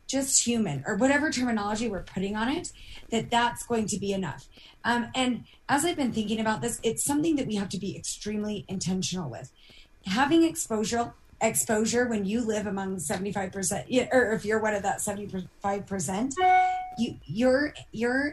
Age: 20-39